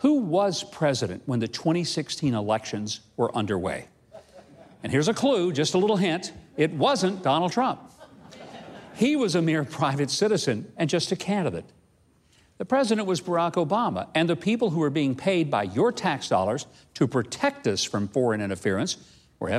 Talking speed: 165 wpm